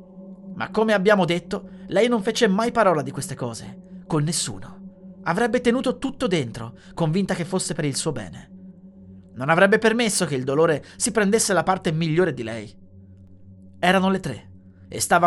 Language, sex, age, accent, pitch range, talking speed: Italian, male, 30-49, native, 125-205 Hz, 170 wpm